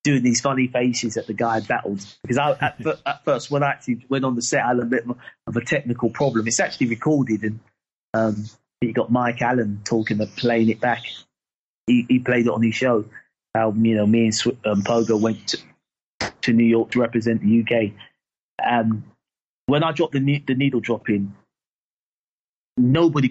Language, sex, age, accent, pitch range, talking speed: English, male, 30-49, British, 115-150 Hz, 195 wpm